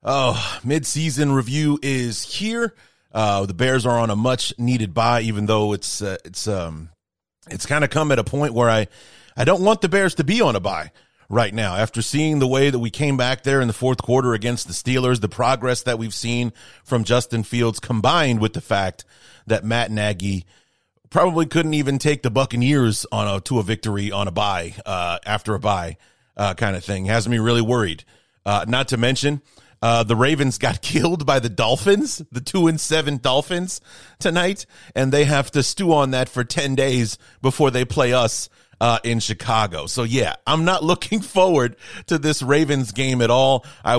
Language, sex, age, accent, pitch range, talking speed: English, male, 30-49, American, 110-140 Hz, 200 wpm